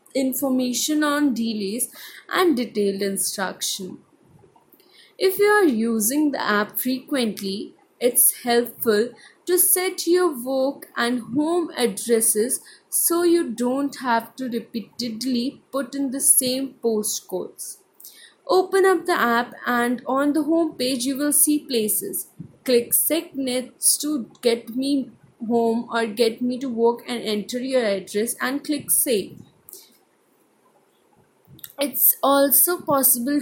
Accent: Indian